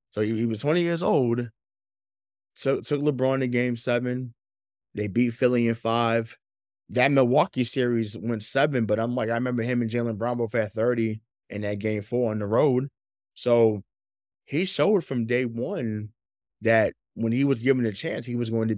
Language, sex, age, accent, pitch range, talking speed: English, male, 20-39, American, 105-125 Hz, 185 wpm